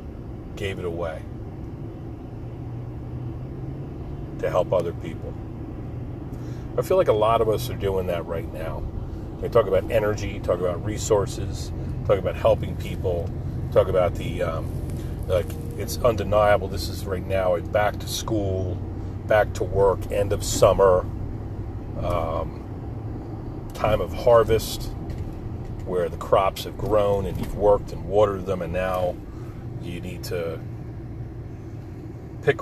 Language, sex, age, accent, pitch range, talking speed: English, male, 40-59, American, 95-115 Hz, 130 wpm